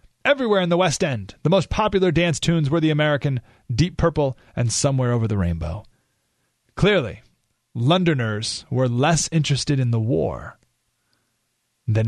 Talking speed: 145 wpm